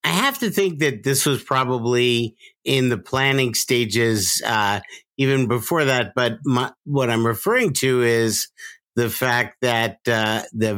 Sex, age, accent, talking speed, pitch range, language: male, 50-69, American, 155 wpm, 110-130 Hz, English